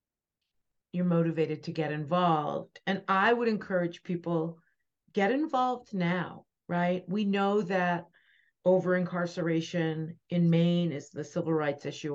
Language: English